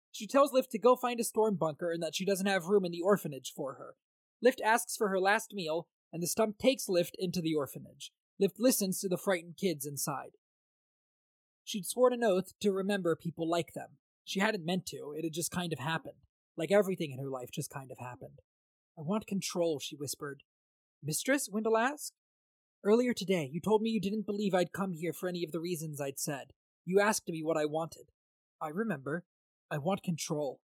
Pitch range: 160-215 Hz